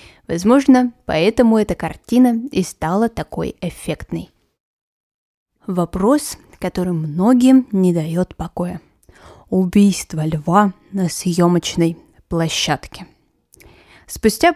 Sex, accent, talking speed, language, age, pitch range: female, native, 80 wpm, Russian, 20-39, 180-245 Hz